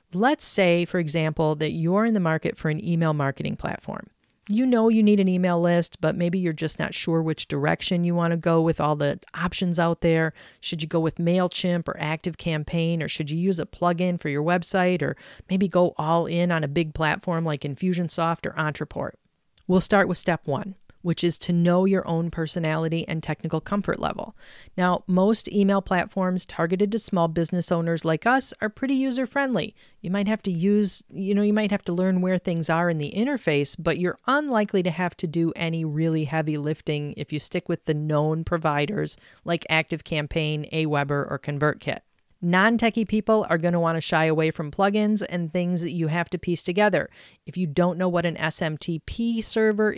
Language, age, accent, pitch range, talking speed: English, 40-59, American, 160-190 Hz, 200 wpm